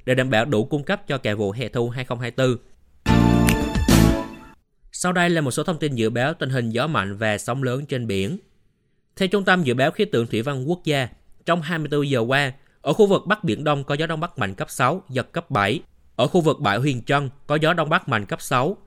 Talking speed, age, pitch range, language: 235 wpm, 20-39, 125-170 Hz, Vietnamese